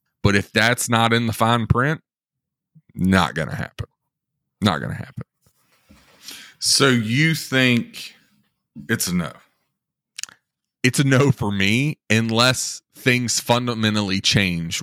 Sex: male